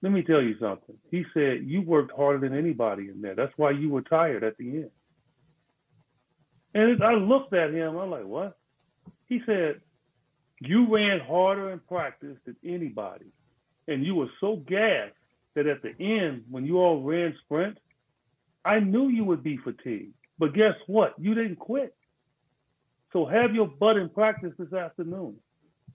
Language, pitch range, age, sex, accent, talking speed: English, 135-190 Hz, 40-59, male, American, 170 wpm